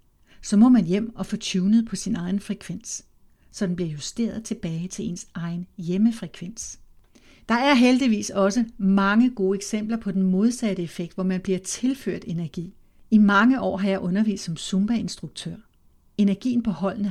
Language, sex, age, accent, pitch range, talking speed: Danish, female, 60-79, native, 185-225 Hz, 165 wpm